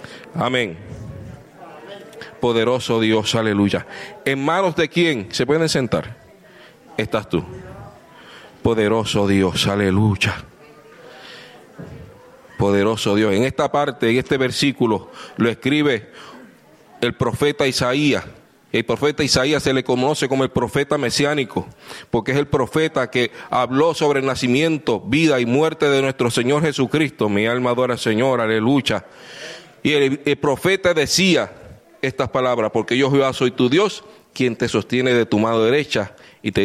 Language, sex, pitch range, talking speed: English, male, 120-160 Hz, 135 wpm